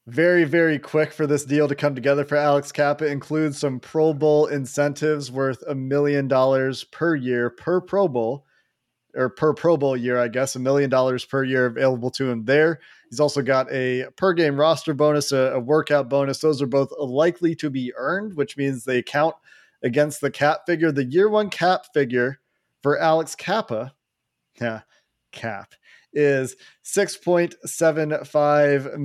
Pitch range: 130-155 Hz